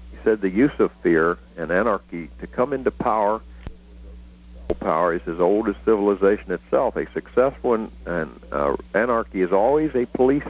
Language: English